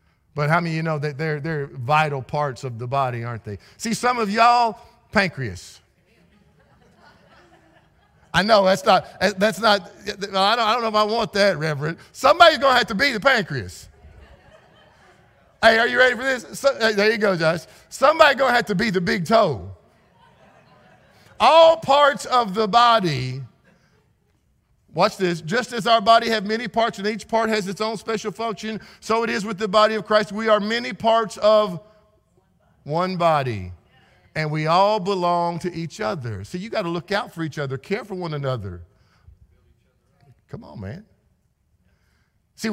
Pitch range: 140-220 Hz